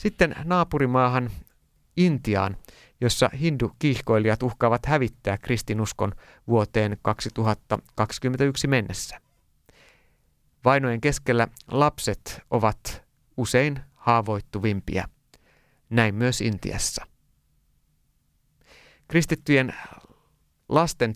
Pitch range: 105-130 Hz